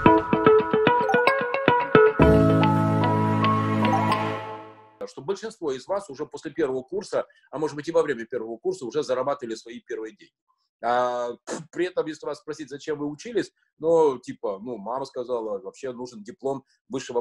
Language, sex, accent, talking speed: Russian, male, native, 135 wpm